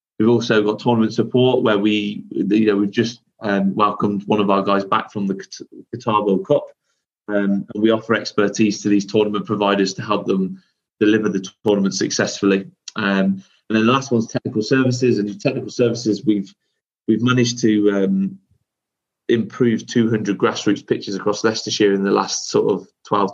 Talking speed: 175 wpm